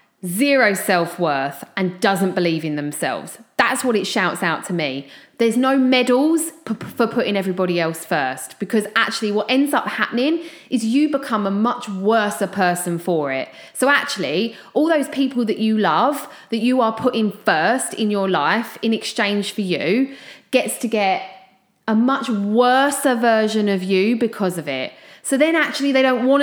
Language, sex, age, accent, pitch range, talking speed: English, female, 30-49, British, 190-265 Hz, 180 wpm